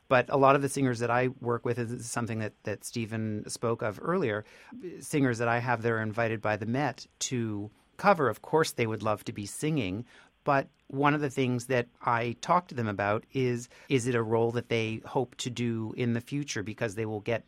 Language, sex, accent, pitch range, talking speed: English, male, American, 115-135 Hz, 230 wpm